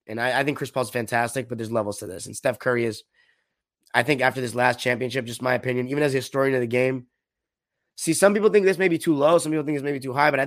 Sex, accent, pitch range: male, American, 125-165 Hz